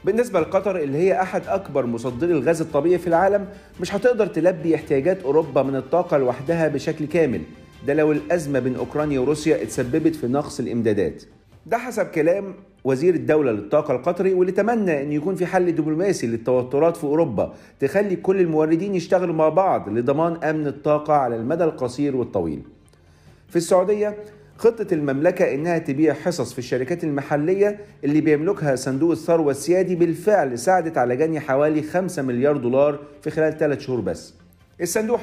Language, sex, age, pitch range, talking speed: Arabic, male, 40-59, 140-180 Hz, 155 wpm